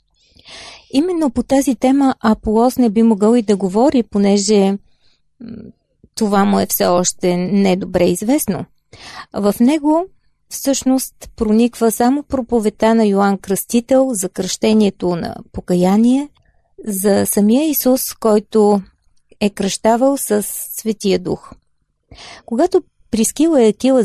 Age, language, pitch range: 30-49, Bulgarian, 195-255 Hz